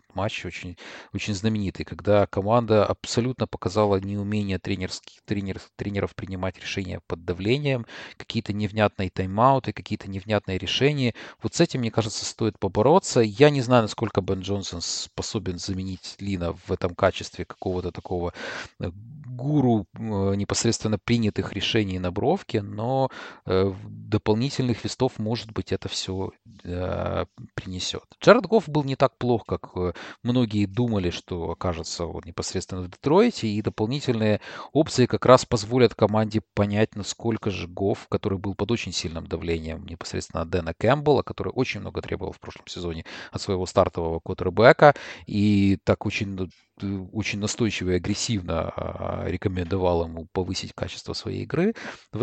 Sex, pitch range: male, 95-115 Hz